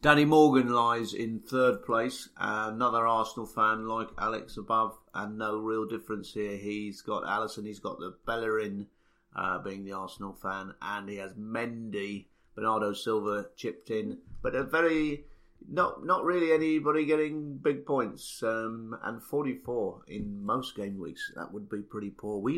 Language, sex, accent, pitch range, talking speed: English, male, British, 105-130 Hz, 160 wpm